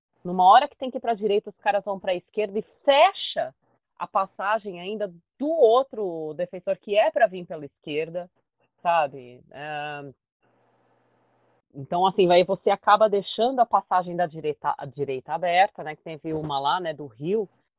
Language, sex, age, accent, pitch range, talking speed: Portuguese, female, 30-49, Brazilian, 165-230 Hz, 170 wpm